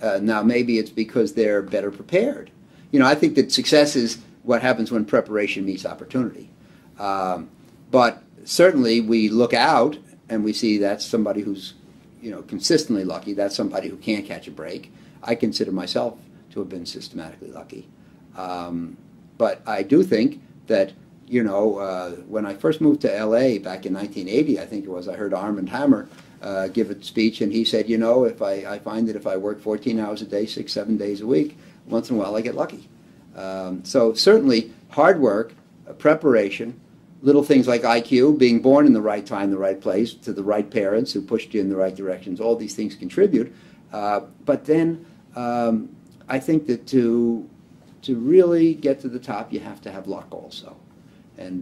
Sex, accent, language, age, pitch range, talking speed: male, American, English, 50-69, 100-120 Hz, 195 wpm